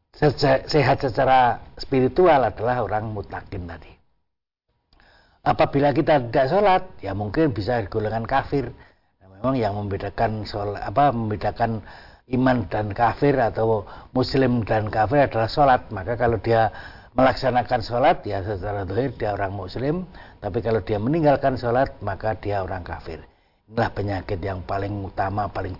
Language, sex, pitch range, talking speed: Indonesian, male, 100-130 Hz, 130 wpm